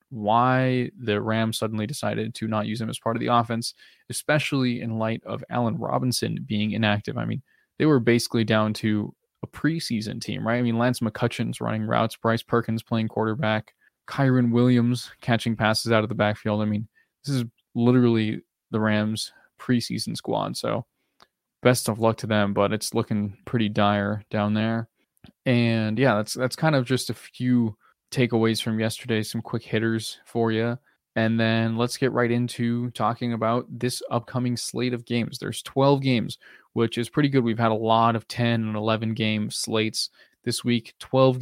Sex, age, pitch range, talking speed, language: male, 20-39, 110-125 Hz, 180 wpm, English